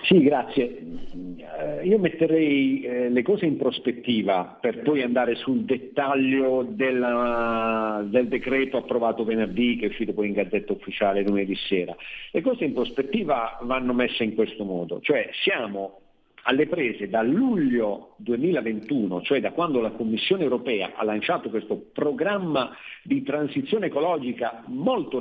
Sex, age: male, 50-69